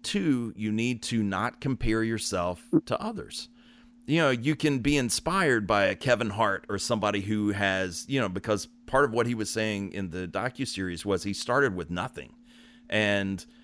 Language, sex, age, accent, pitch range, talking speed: English, male, 40-59, American, 95-120 Hz, 185 wpm